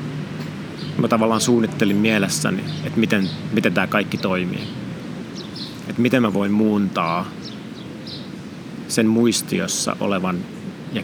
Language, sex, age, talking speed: Finnish, male, 30-49, 105 wpm